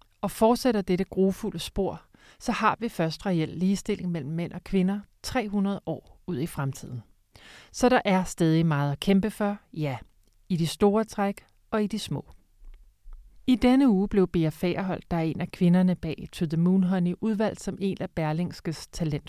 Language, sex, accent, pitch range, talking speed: Danish, male, native, 160-200 Hz, 185 wpm